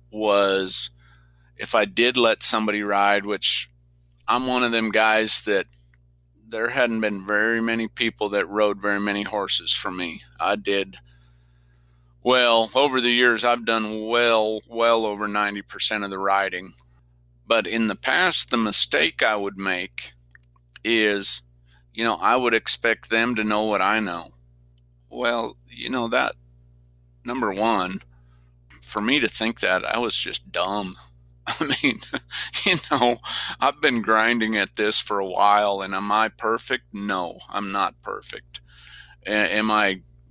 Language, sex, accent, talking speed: English, male, American, 150 wpm